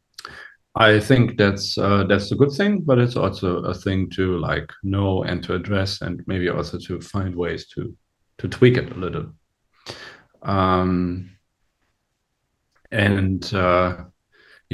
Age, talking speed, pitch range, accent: 40-59, 140 wpm, 95-120 Hz, German